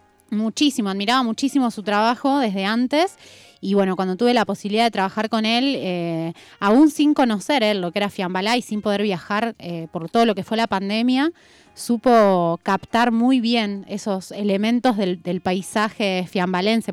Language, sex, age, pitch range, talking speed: Spanish, female, 20-39, 195-240 Hz, 175 wpm